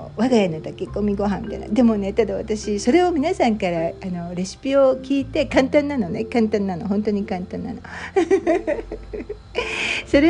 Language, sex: Japanese, female